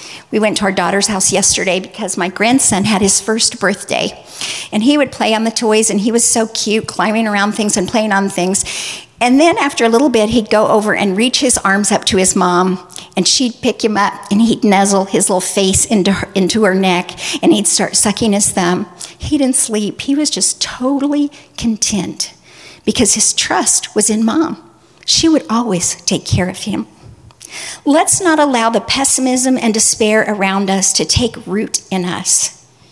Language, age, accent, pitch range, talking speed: English, 50-69, American, 195-270 Hz, 195 wpm